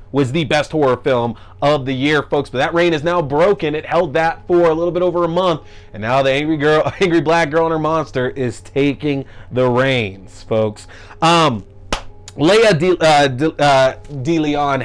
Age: 30-49